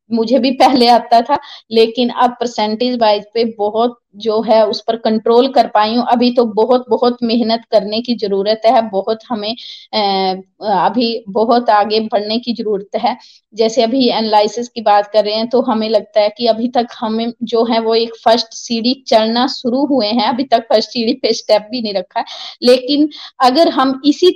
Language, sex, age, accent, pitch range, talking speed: Hindi, female, 20-39, native, 215-245 Hz, 190 wpm